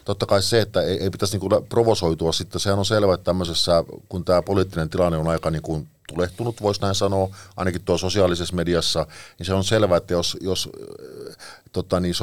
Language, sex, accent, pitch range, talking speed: Finnish, male, native, 85-100 Hz, 195 wpm